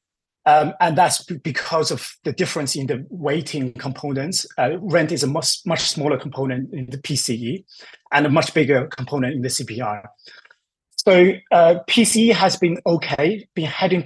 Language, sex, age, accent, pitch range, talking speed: English, male, 30-49, British, 130-170 Hz, 165 wpm